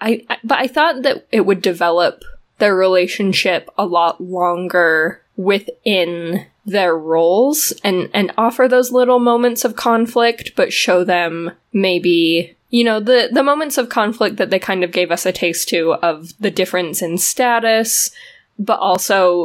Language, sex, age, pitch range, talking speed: English, female, 10-29, 175-225 Hz, 160 wpm